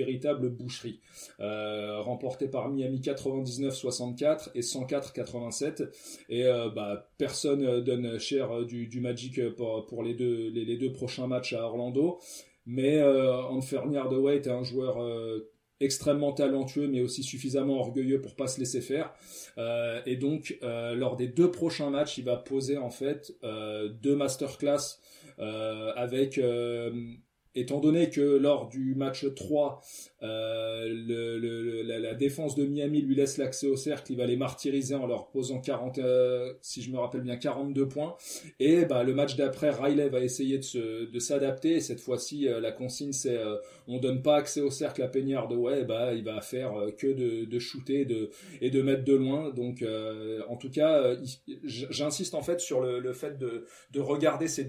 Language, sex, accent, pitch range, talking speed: French, male, French, 120-140 Hz, 180 wpm